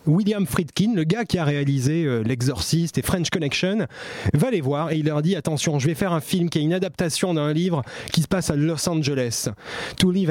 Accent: French